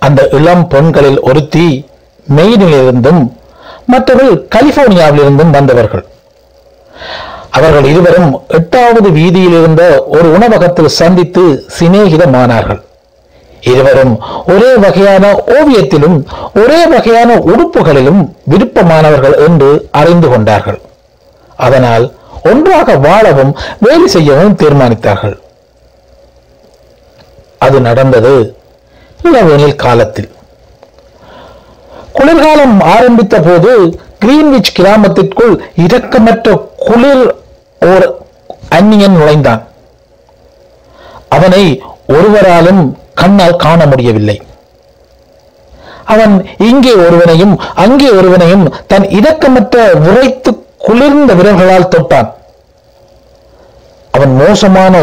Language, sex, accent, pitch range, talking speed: Tamil, male, native, 140-215 Hz, 70 wpm